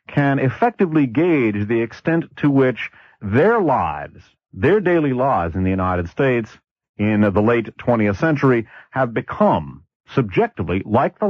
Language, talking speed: English, 140 wpm